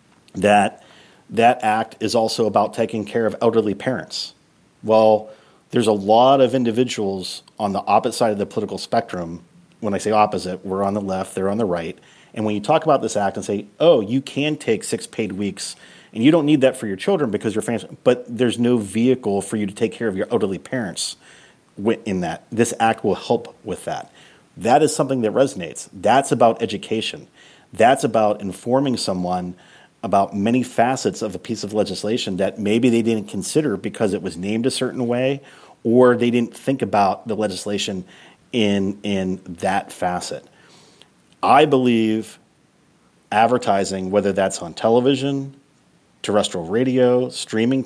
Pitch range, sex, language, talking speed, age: 100-125 Hz, male, English, 175 wpm, 40-59